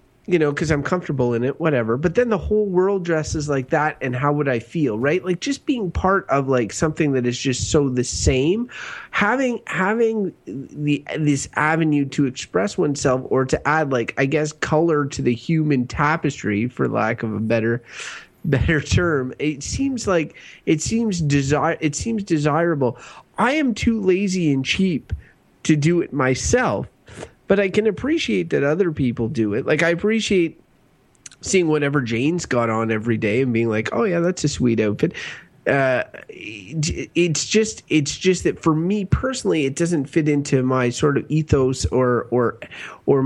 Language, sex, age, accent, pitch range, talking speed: English, male, 30-49, American, 130-180 Hz, 180 wpm